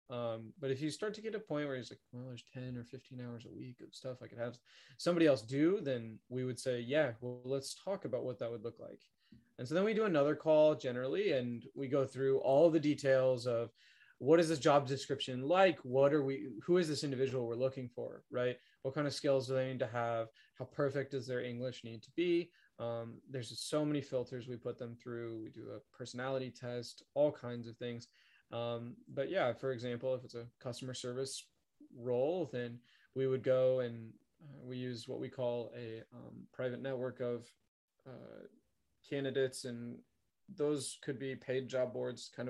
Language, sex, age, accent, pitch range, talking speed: English, male, 20-39, American, 120-140 Hz, 205 wpm